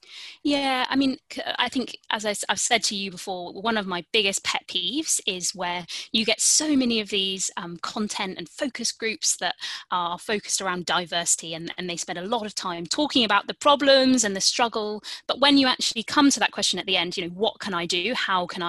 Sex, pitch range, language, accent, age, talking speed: female, 180-235 Hz, English, British, 20-39, 220 wpm